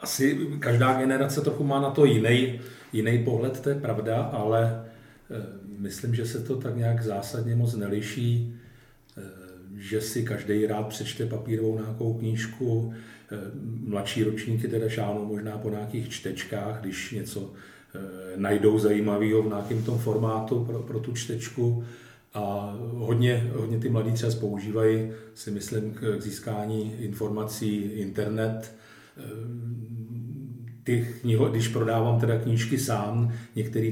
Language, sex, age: Czech, male, 40-59